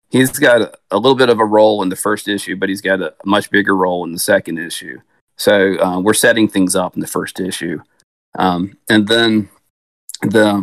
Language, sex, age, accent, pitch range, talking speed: English, male, 40-59, American, 90-100 Hz, 210 wpm